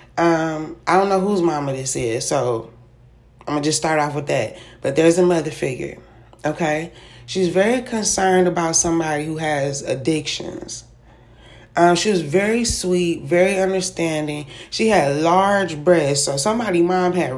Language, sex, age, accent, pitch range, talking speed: English, female, 20-39, American, 150-185 Hz, 160 wpm